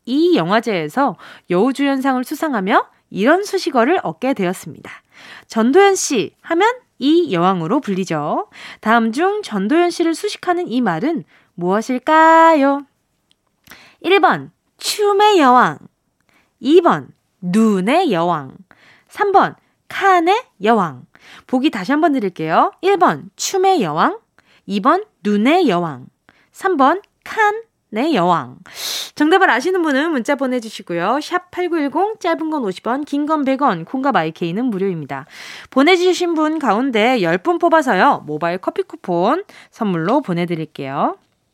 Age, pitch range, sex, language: 20-39, 210-345 Hz, female, Korean